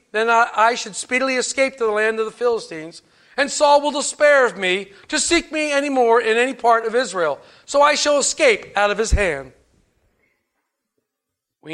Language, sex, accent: English, male, American